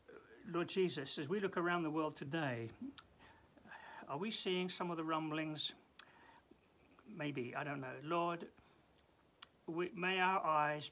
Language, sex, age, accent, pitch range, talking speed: English, male, 60-79, British, 135-185 Hz, 135 wpm